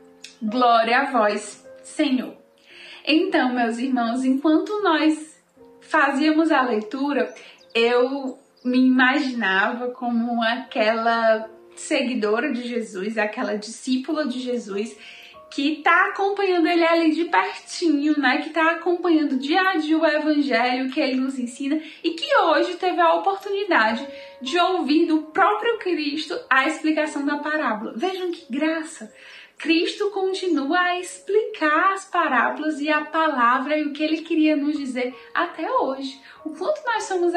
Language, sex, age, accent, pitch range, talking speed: Portuguese, female, 10-29, Brazilian, 255-325 Hz, 135 wpm